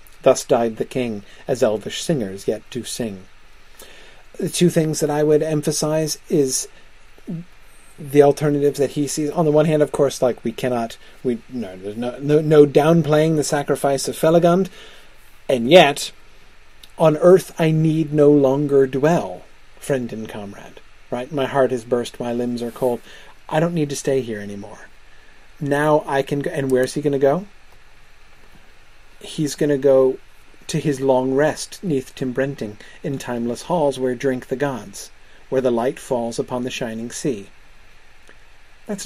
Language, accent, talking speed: English, American, 165 wpm